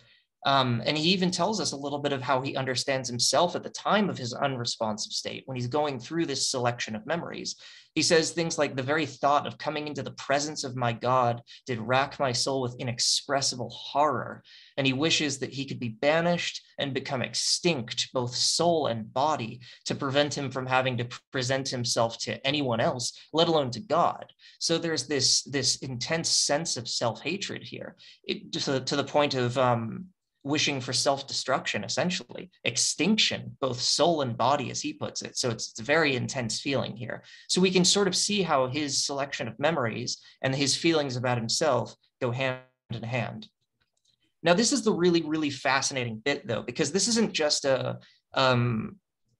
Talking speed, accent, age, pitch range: 190 wpm, American, 20-39, 125-155 Hz